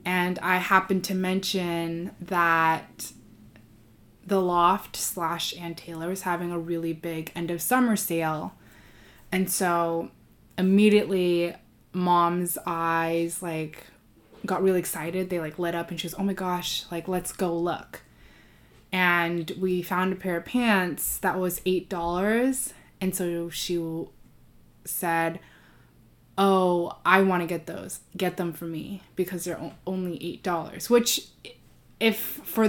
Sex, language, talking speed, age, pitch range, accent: female, English, 130 wpm, 20-39, 170-190 Hz, American